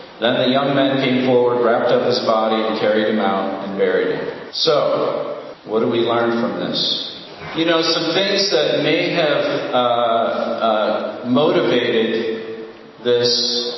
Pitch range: 115-155 Hz